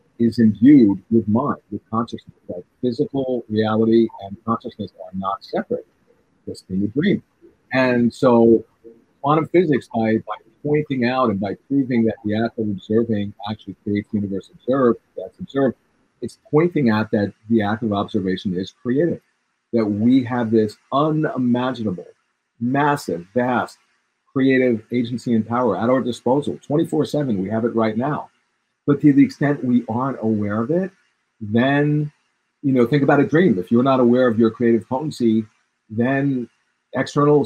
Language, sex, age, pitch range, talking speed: English, male, 50-69, 110-130 Hz, 155 wpm